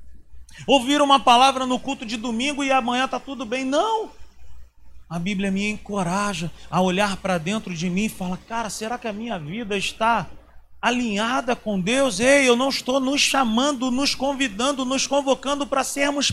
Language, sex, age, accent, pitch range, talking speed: Portuguese, male, 40-59, Brazilian, 155-260 Hz, 175 wpm